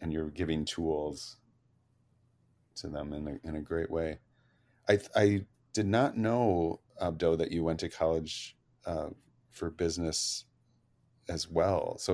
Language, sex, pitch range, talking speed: English, male, 80-105 Hz, 145 wpm